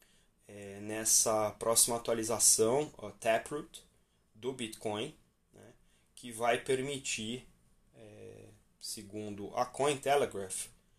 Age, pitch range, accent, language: 20-39, 105-130 Hz, Brazilian, Portuguese